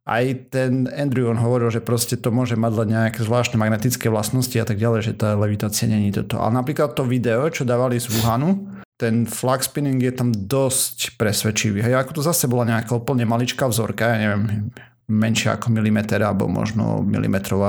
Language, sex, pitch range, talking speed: Slovak, male, 110-125 Hz, 185 wpm